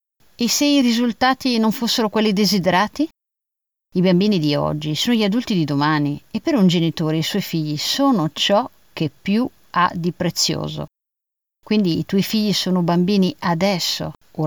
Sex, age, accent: female, 50-69, native